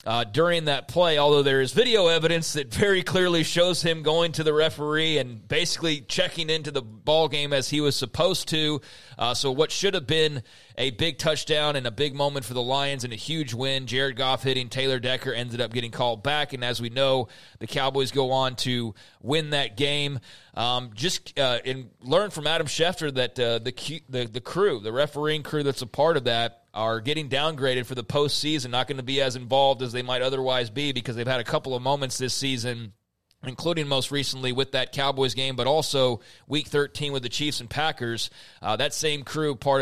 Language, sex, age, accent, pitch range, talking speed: English, male, 30-49, American, 125-150 Hz, 210 wpm